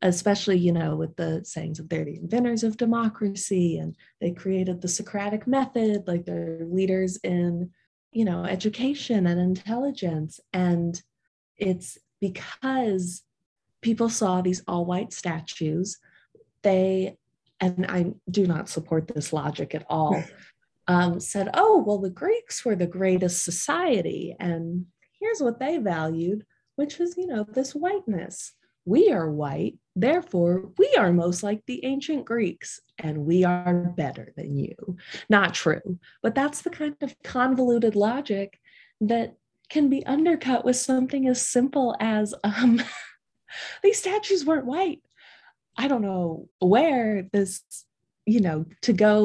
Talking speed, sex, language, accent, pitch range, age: 140 wpm, female, English, American, 180-255 Hz, 30-49